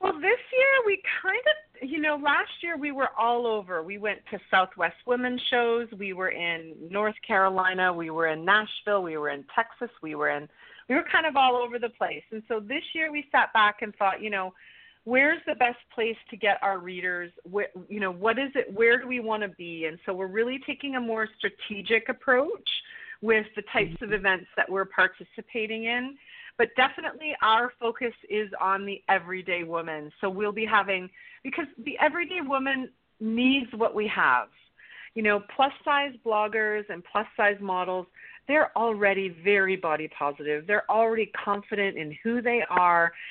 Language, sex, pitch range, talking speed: English, female, 190-250 Hz, 185 wpm